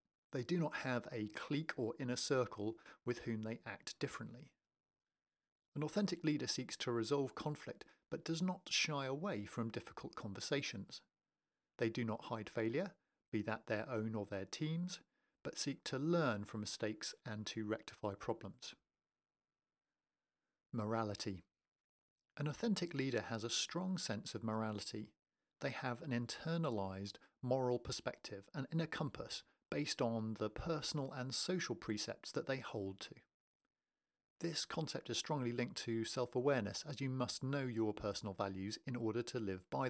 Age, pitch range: 50-69, 110-140 Hz